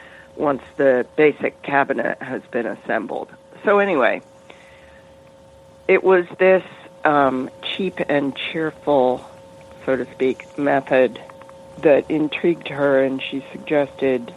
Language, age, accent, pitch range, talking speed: English, 50-69, American, 130-160 Hz, 110 wpm